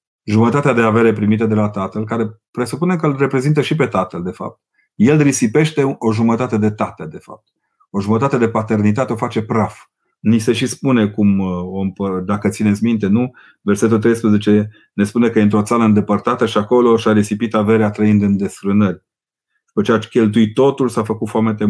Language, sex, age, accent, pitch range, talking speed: Romanian, male, 30-49, native, 105-115 Hz, 190 wpm